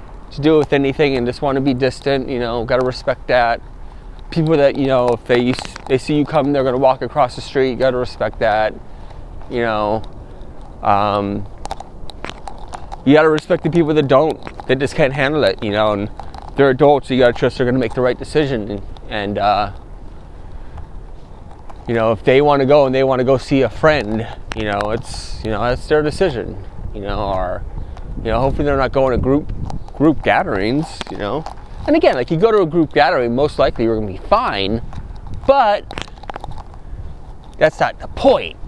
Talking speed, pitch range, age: 205 wpm, 115-155 Hz, 20-39